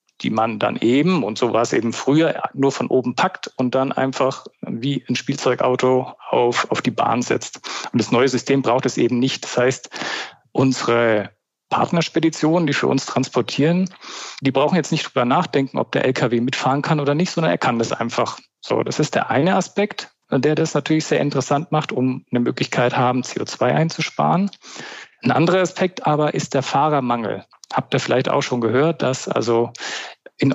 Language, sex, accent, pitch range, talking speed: German, male, German, 130-160 Hz, 185 wpm